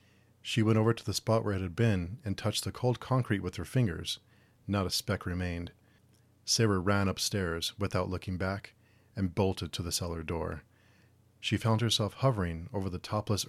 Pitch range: 90-110 Hz